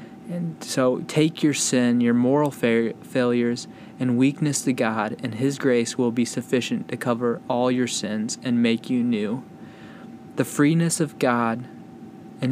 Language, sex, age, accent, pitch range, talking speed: English, male, 20-39, American, 120-140 Hz, 155 wpm